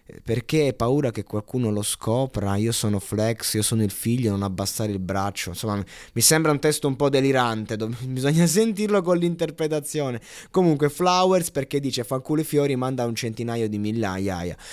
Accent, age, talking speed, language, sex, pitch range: native, 20-39, 175 wpm, Italian, male, 105-145 Hz